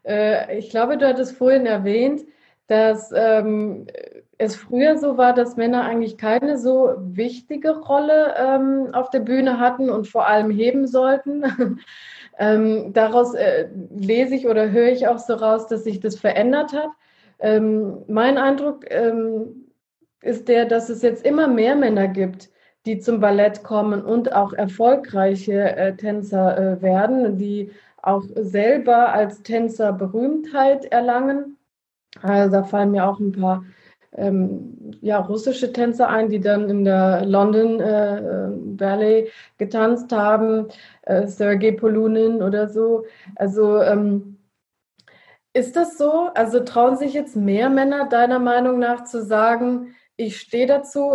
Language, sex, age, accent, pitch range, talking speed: German, female, 20-39, German, 210-255 Hz, 135 wpm